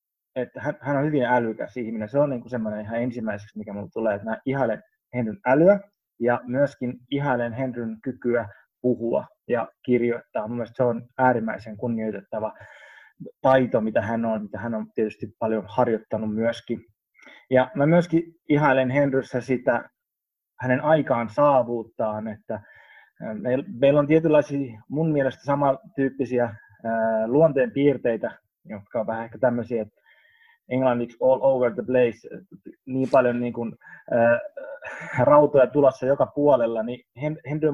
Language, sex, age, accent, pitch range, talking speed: Finnish, male, 20-39, native, 115-140 Hz, 130 wpm